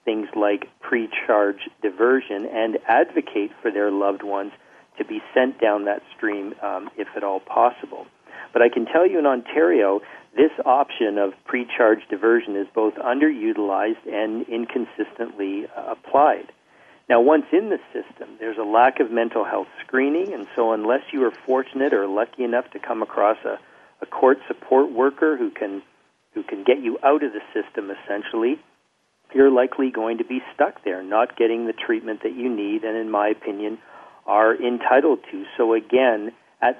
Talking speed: 170 wpm